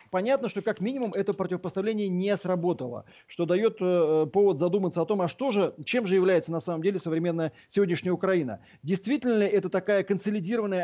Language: Russian